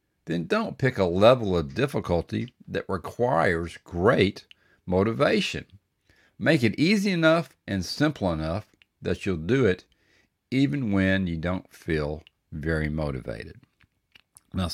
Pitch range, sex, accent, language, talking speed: 85-115 Hz, male, American, English, 120 wpm